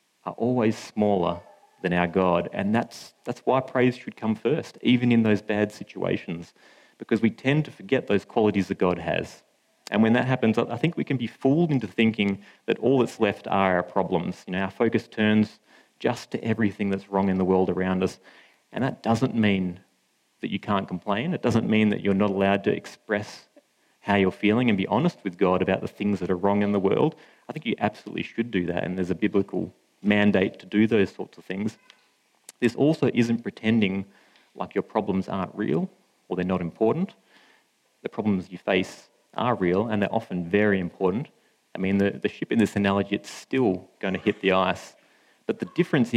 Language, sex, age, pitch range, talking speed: English, male, 30-49, 95-115 Hz, 205 wpm